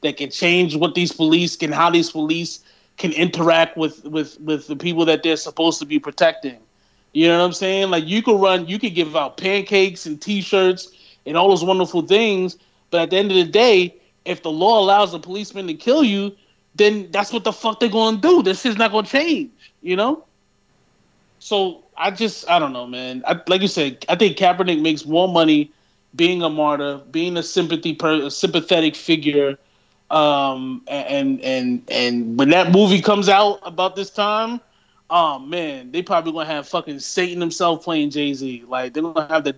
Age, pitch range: 30-49, 155-195 Hz